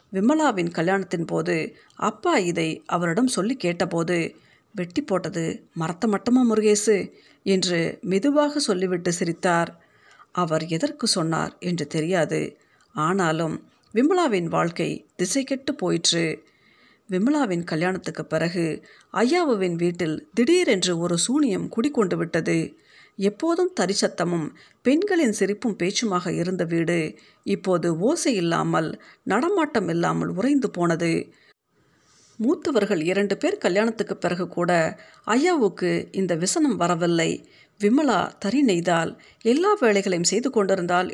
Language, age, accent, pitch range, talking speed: Tamil, 50-69, native, 170-230 Hz, 100 wpm